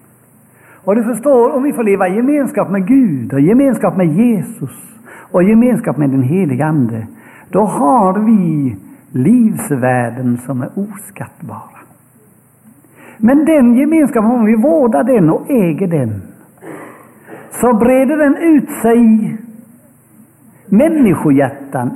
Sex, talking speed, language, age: male, 125 wpm, English, 60-79